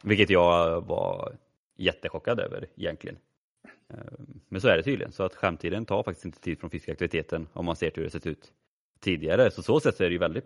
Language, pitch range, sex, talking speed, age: Swedish, 85-100 Hz, male, 200 wpm, 30-49